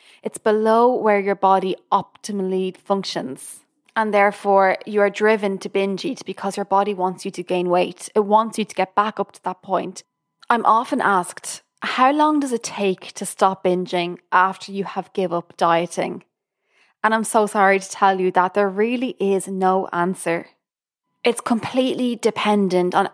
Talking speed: 175 wpm